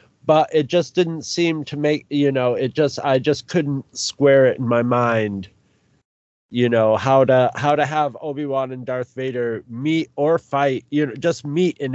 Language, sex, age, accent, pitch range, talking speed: English, male, 30-49, American, 115-140 Hz, 195 wpm